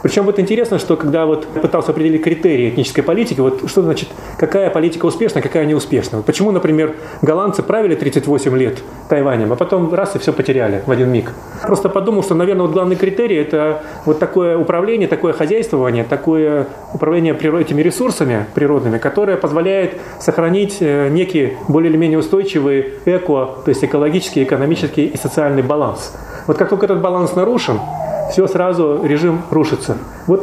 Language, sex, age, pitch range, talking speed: Russian, male, 30-49, 145-185 Hz, 155 wpm